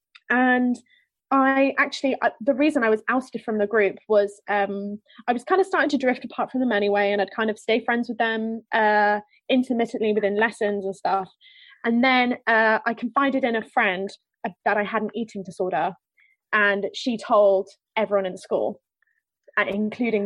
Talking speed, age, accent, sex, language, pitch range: 180 wpm, 20-39, British, female, English, 210-260 Hz